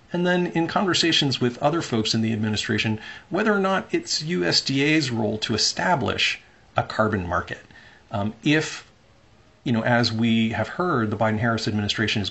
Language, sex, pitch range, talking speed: English, male, 105-130 Hz, 160 wpm